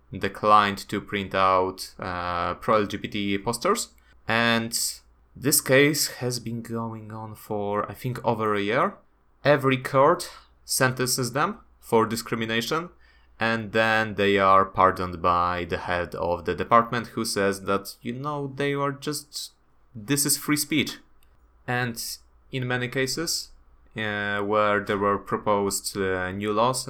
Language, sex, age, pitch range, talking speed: English, male, 20-39, 95-120 Hz, 135 wpm